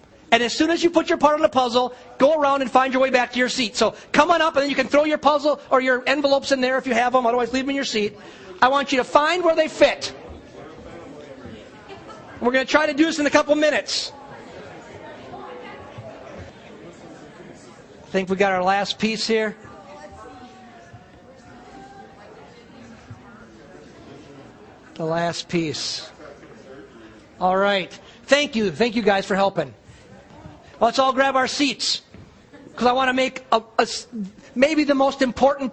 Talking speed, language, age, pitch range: 170 wpm, English, 40-59, 230-290 Hz